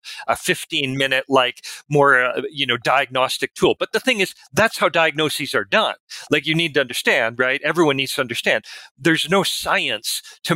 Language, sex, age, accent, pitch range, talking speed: English, male, 40-59, American, 130-170 Hz, 190 wpm